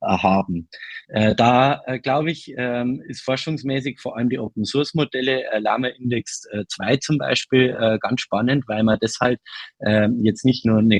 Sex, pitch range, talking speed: male, 105-130 Hz, 130 wpm